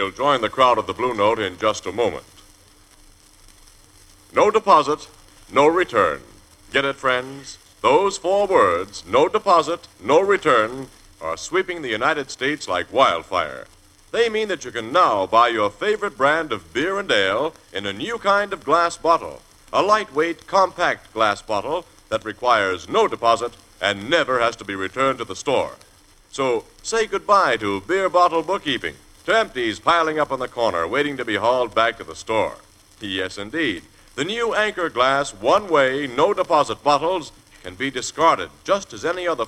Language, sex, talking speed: English, male, 170 wpm